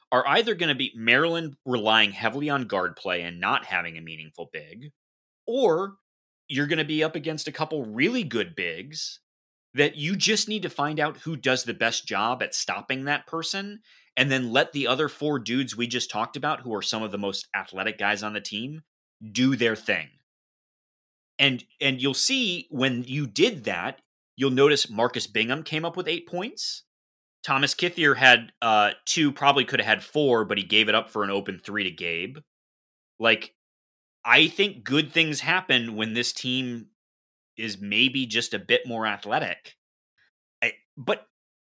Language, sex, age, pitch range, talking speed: English, male, 30-49, 110-150 Hz, 180 wpm